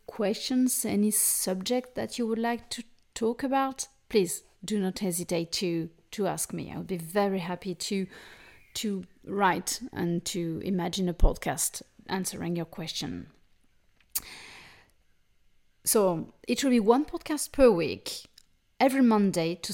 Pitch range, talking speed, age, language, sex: 185-225 Hz, 135 wpm, 30-49, English, female